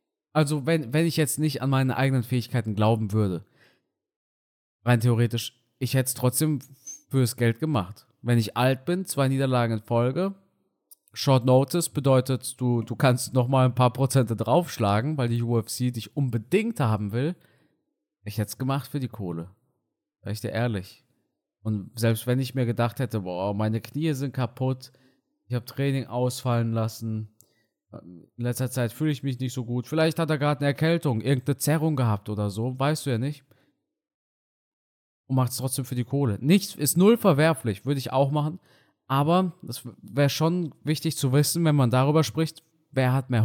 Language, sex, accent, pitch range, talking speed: German, male, German, 115-145 Hz, 180 wpm